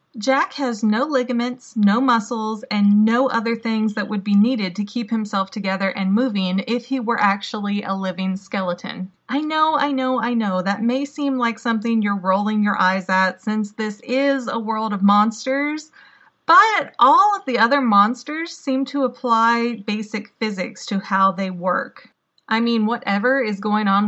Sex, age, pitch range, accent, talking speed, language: female, 30-49, 200-250 Hz, American, 175 wpm, English